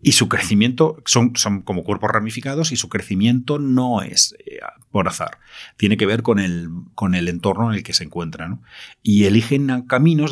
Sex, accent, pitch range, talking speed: male, Spanish, 95-125 Hz, 190 wpm